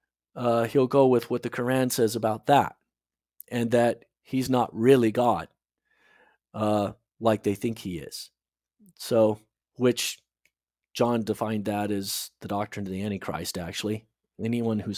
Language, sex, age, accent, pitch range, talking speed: English, male, 40-59, American, 105-140 Hz, 145 wpm